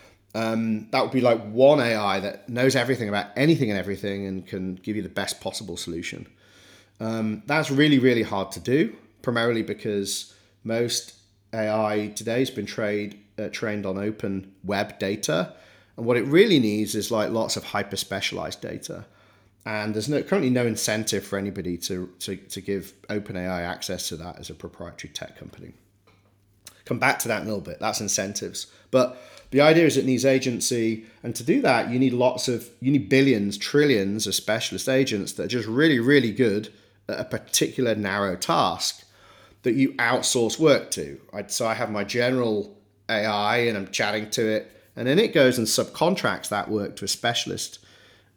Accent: British